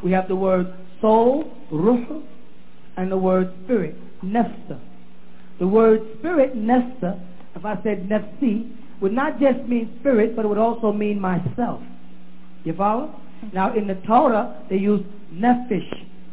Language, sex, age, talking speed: English, male, 40-59, 145 wpm